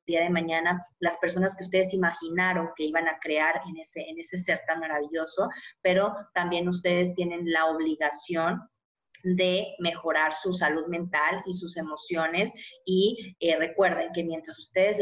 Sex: female